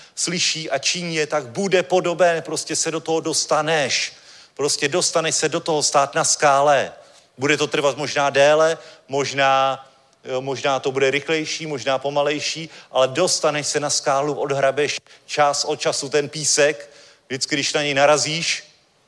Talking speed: 155 wpm